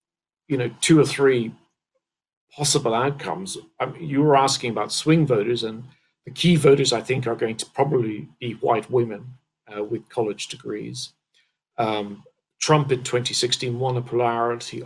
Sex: male